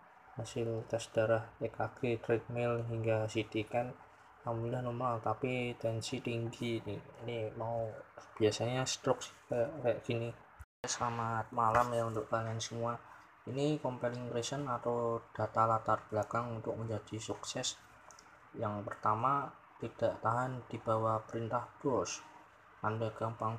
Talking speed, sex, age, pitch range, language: 115 wpm, male, 20-39, 110-125 Hz, Indonesian